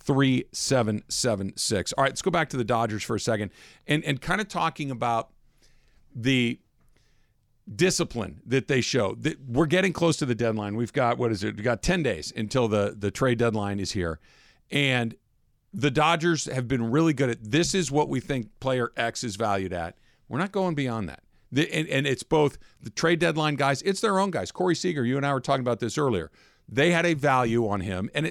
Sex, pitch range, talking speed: male, 115-155 Hz, 210 wpm